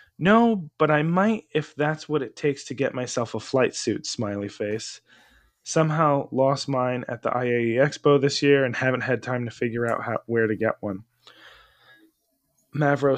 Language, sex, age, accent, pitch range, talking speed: English, male, 20-39, American, 115-145 Hz, 175 wpm